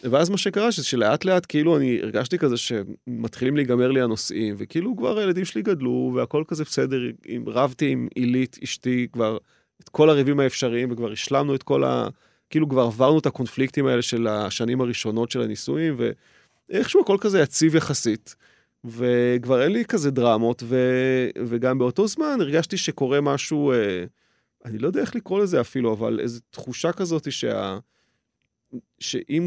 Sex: male